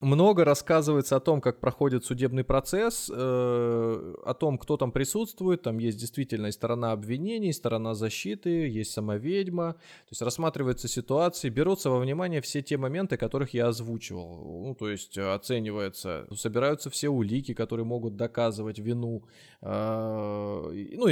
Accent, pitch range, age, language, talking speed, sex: native, 115-145 Hz, 20-39, Russian, 135 wpm, male